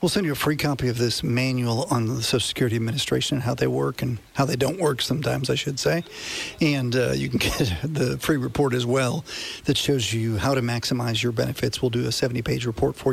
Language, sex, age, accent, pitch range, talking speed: English, male, 50-69, American, 120-150 Hz, 235 wpm